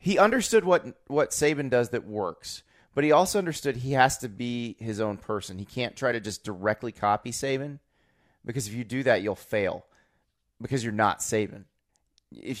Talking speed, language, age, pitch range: 185 wpm, English, 30-49, 105-130 Hz